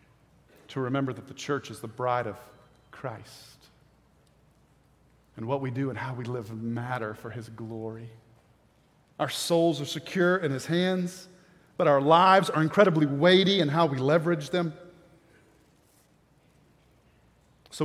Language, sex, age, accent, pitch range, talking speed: English, male, 40-59, American, 125-170 Hz, 140 wpm